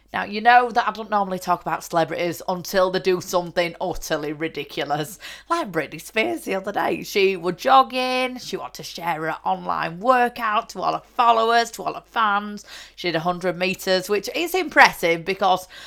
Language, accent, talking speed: English, British, 180 wpm